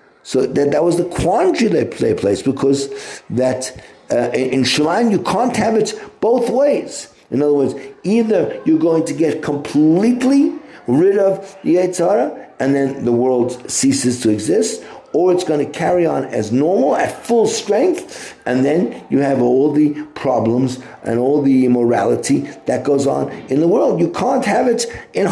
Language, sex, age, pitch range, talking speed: English, male, 50-69, 120-175 Hz, 170 wpm